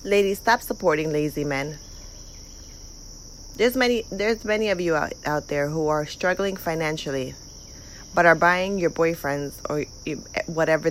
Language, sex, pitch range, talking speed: English, female, 150-190 Hz, 140 wpm